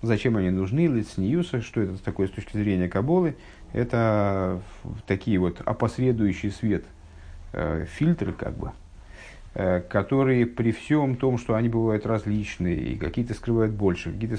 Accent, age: native, 50-69